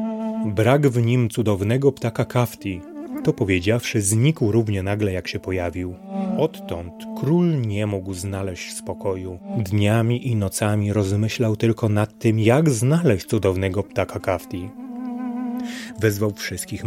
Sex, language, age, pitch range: male, Polish, 30-49, 105-145 Hz